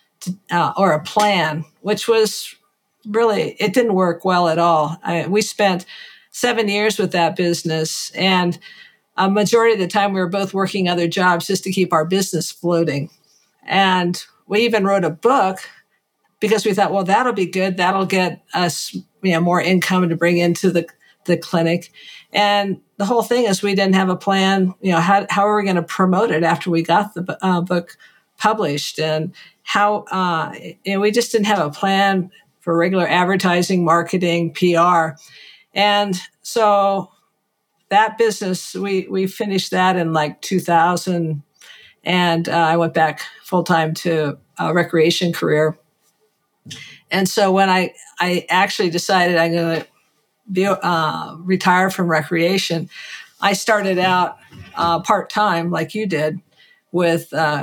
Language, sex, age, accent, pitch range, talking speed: English, female, 50-69, American, 170-200 Hz, 160 wpm